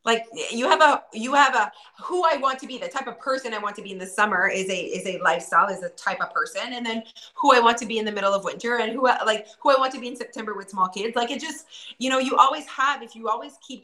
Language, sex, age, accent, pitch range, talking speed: English, female, 20-39, American, 190-245 Hz, 305 wpm